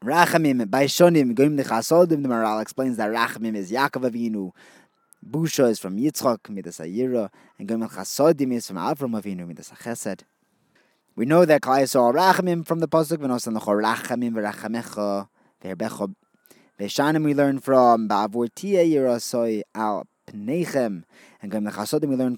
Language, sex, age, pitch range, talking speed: English, male, 20-39, 110-155 Hz, 150 wpm